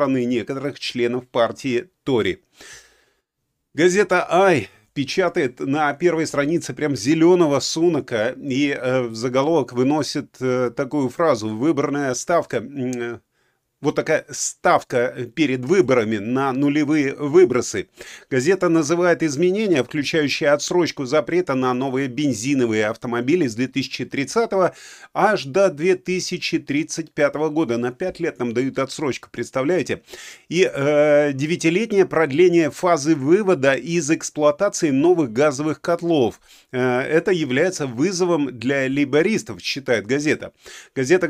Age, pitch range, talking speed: 30-49, 135-180 Hz, 110 wpm